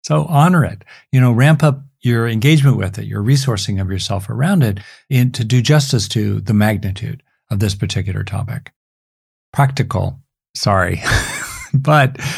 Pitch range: 100-140 Hz